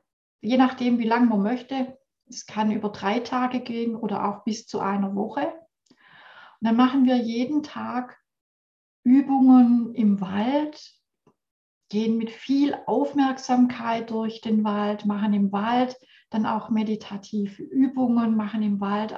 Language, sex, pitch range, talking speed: German, female, 210-255 Hz, 135 wpm